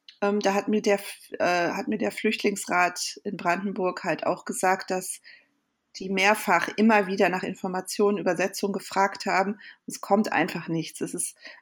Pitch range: 190-235 Hz